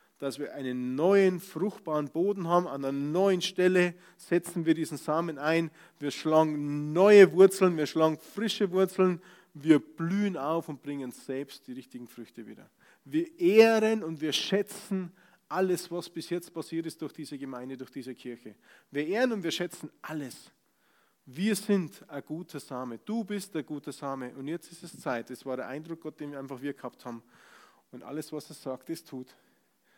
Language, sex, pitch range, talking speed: German, male, 145-200 Hz, 180 wpm